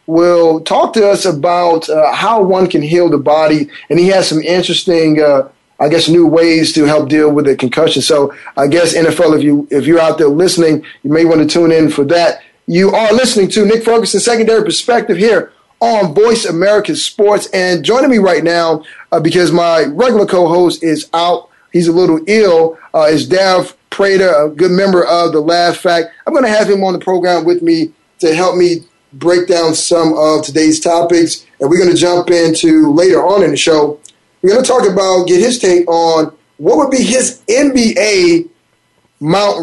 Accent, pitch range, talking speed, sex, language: American, 160-200 Hz, 205 wpm, male, English